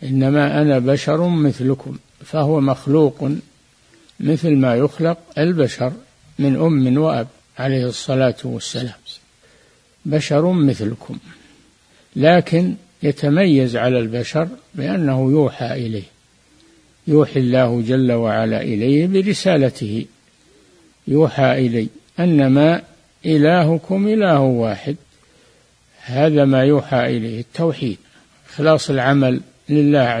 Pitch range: 125-150 Hz